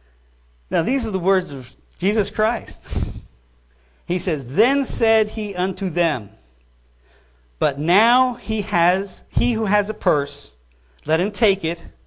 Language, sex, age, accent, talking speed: English, male, 50-69, American, 140 wpm